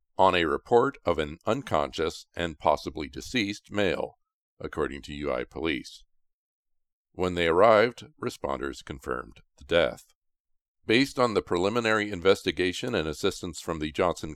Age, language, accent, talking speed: 50-69, English, American, 130 wpm